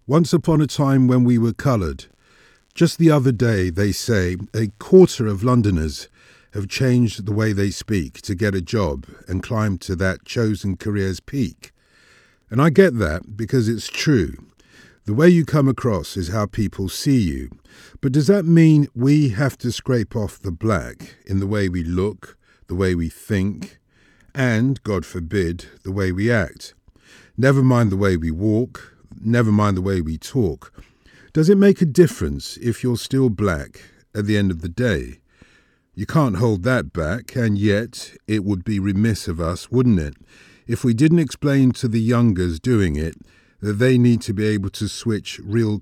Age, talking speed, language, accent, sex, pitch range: 50-69, 180 wpm, English, British, male, 95-125 Hz